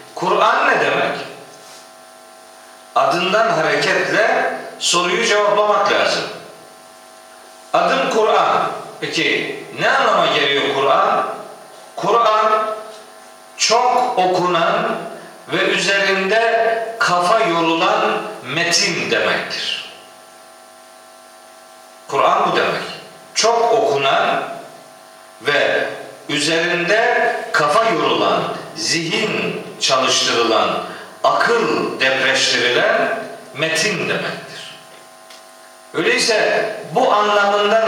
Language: Turkish